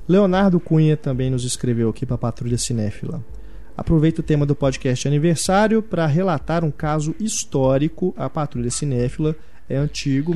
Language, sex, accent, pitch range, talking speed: Portuguese, male, Brazilian, 130-170 Hz, 150 wpm